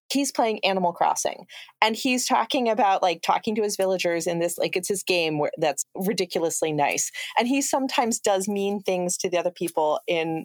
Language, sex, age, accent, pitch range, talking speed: English, female, 30-49, American, 185-255 Hz, 195 wpm